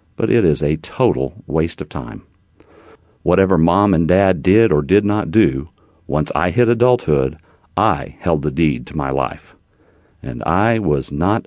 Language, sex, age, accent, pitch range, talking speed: English, male, 50-69, American, 80-110 Hz, 165 wpm